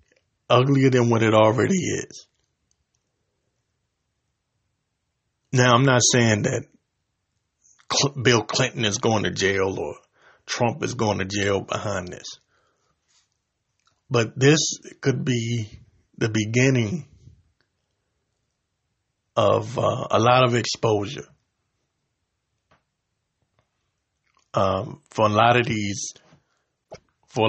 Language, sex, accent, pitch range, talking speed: English, male, American, 90-125 Hz, 85 wpm